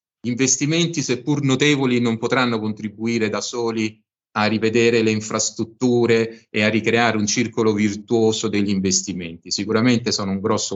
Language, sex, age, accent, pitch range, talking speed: Italian, male, 30-49, native, 100-125 Hz, 140 wpm